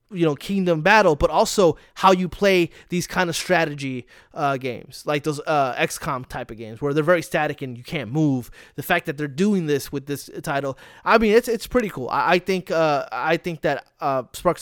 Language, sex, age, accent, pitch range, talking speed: English, male, 20-39, American, 150-190 Hz, 215 wpm